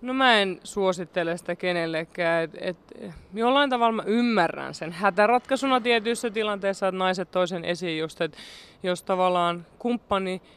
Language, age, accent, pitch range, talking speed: Finnish, 20-39, native, 175-215 Hz, 150 wpm